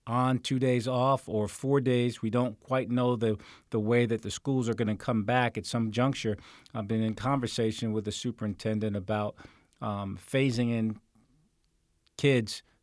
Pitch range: 110-125 Hz